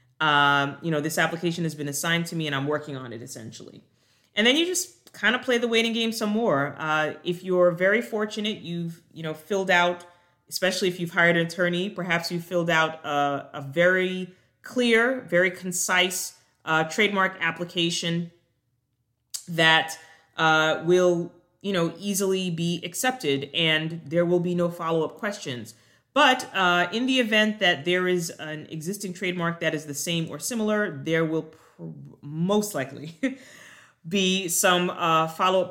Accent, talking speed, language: American, 165 wpm, English